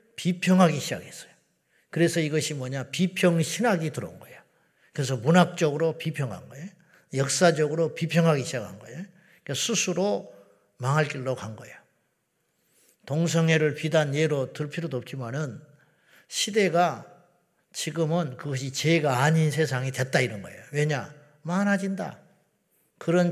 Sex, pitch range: male, 135-175 Hz